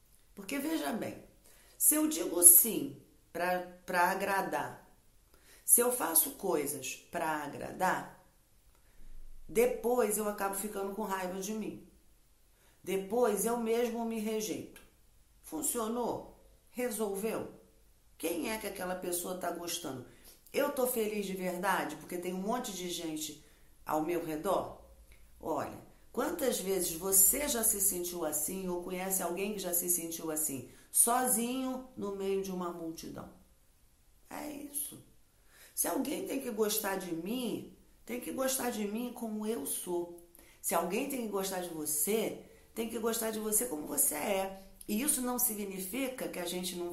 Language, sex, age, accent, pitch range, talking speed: Portuguese, female, 40-59, Brazilian, 175-230 Hz, 145 wpm